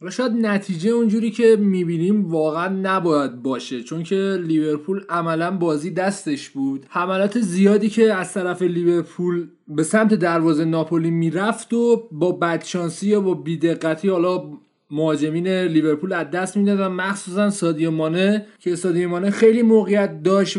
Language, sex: Persian, male